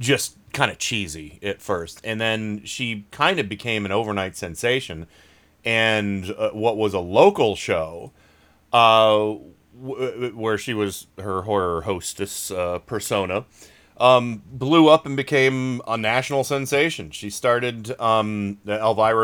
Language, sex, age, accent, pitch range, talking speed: English, male, 30-49, American, 100-125 Hz, 135 wpm